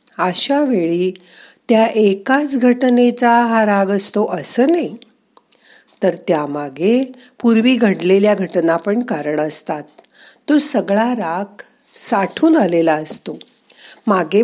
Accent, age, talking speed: native, 50-69, 105 wpm